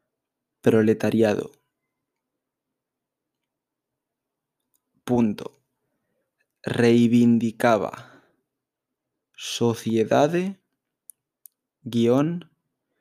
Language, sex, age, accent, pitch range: Spanish, male, 20-39, Spanish, 115-135 Hz